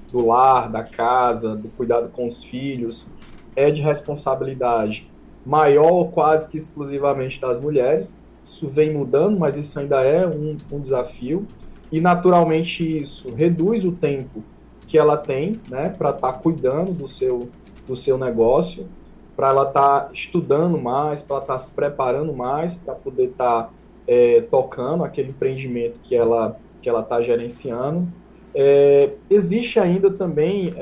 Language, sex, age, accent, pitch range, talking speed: Portuguese, male, 20-39, Brazilian, 140-190 Hz, 150 wpm